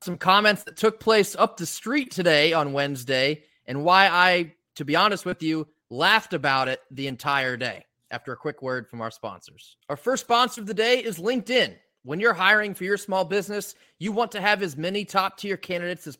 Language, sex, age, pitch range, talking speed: English, male, 30-49, 145-200 Hz, 210 wpm